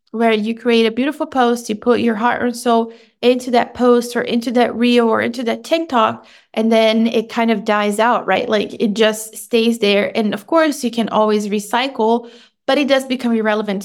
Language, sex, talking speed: English, female, 210 wpm